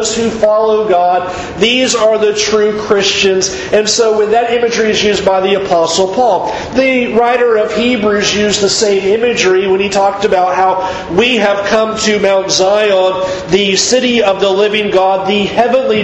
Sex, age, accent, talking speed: male, 40-59, American, 170 wpm